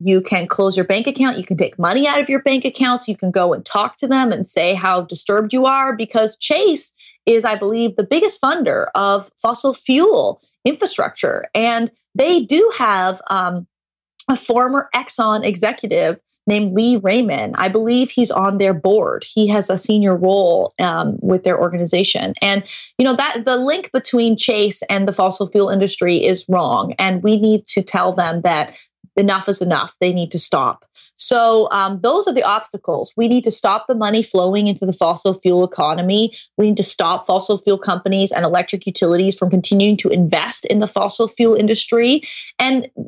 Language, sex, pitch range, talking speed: English, female, 190-255 Hz, 185 wpm